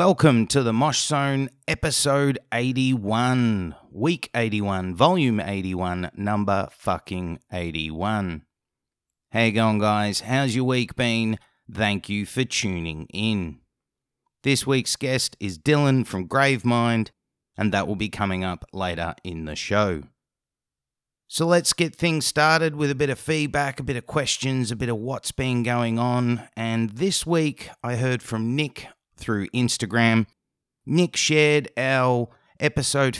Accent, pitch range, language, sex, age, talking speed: Australian, 105-140 Hz, English, male, 30-49, 140 wpm